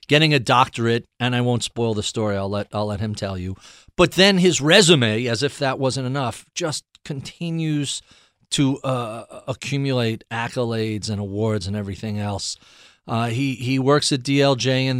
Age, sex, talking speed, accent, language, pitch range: 40-59, male, 170 wpm, American, English, 115-140 Hz